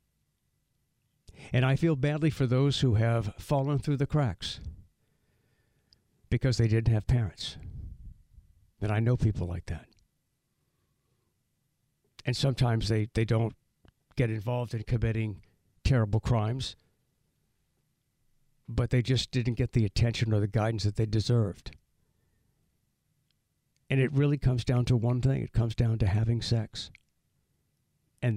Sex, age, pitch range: male, 60-79, 110-135 Hz